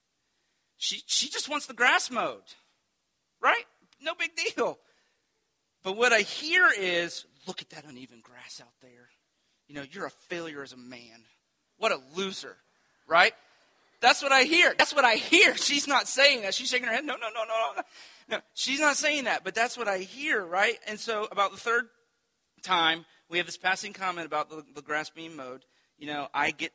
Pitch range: 150-235 Hz